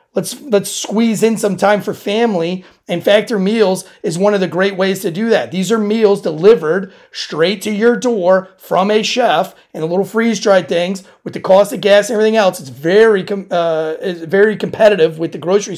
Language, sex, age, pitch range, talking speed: English, male, 30-49, 175-205 Hz, 210 wpm